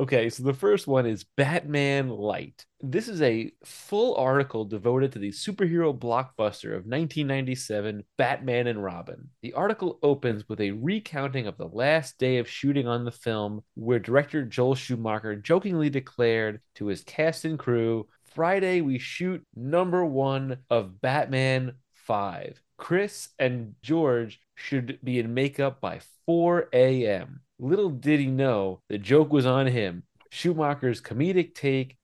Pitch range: 115-155 Hz